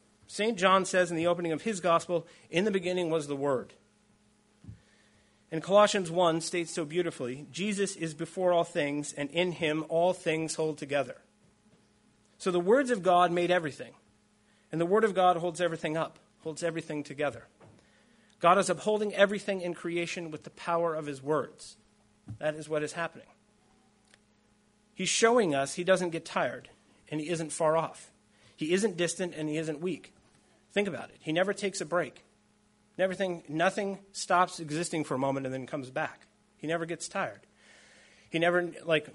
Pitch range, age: 150-180 Hz, 40-59